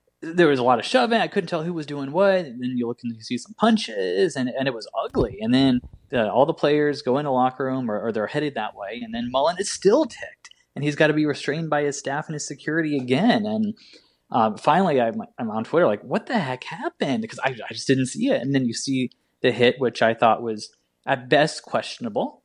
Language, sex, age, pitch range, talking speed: English, male, 20-39, 110-150 Hz, 250 wpm